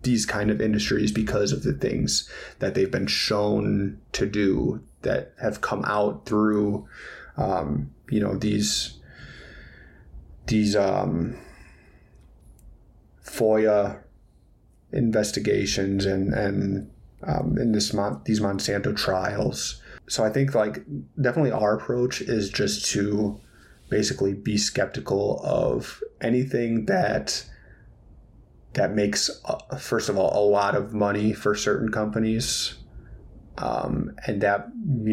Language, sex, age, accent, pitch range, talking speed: English, male, 20-39, American, 100-110 Hz, 115 wpm